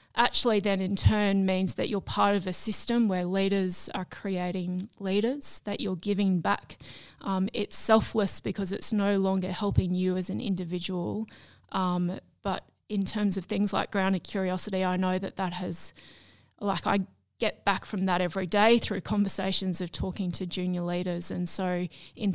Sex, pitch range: female, 180-205 Hz